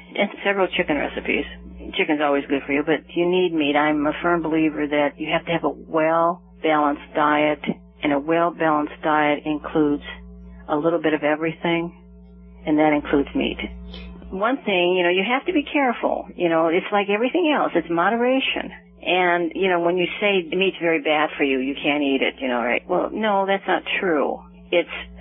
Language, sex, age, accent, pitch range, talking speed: English, female, 50-69, American, 150-185 Hz, 195 wpm